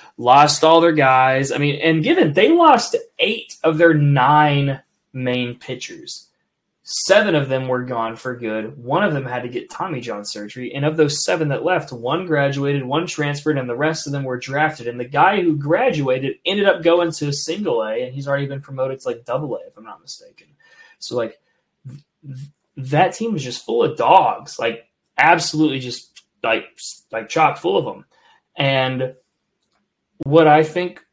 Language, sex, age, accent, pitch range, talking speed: English, male, 20-39, American, 125-160 Hz, 185 wpm